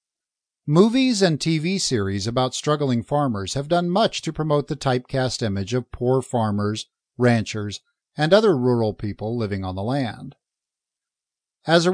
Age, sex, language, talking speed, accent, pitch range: 50-69, male, English, 145 wpm, American, 120-170 Hz